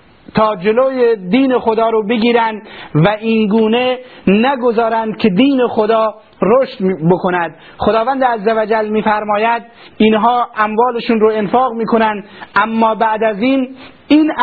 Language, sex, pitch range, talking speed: Persian, male, 205-235 Hz, 115 wpm